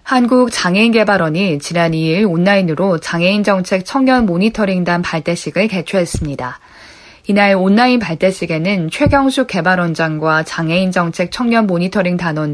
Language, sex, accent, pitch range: Korean, female, native, 170-215 Hz